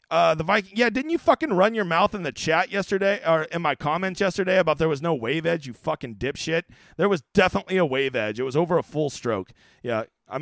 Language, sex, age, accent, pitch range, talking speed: English, male, 30-49, American, 140-220 Hz, 240 wpm